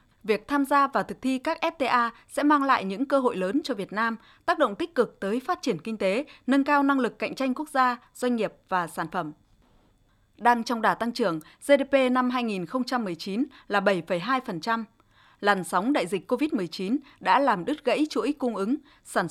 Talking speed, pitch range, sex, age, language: 195 wpm, 200-275 Hz, female, 20-39, Vietnamese